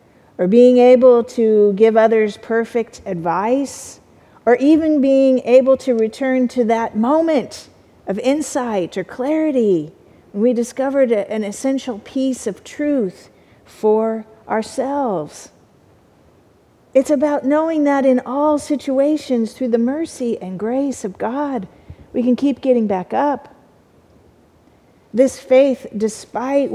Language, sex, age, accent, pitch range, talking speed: English, female, 50-69, American, 195-255 Hz, 120 wpm